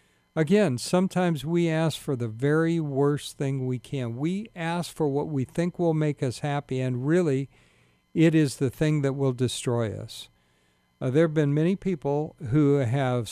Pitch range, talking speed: 120-160 Hz, 175 wpm